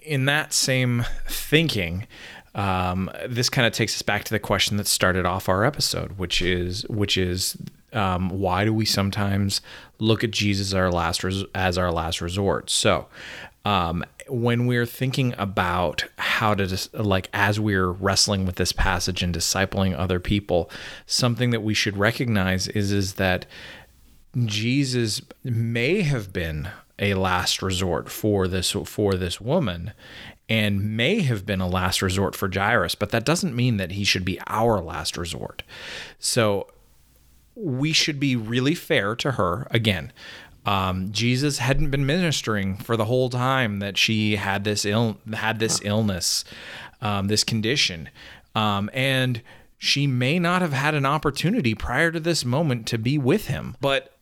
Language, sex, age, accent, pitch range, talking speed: English, male, 30-49, American, 95-125 Hz, 165 wpm